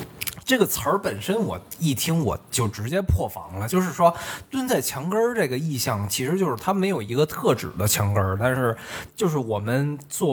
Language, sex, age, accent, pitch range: Chinese, male, 20-39, native, 105-160 Hz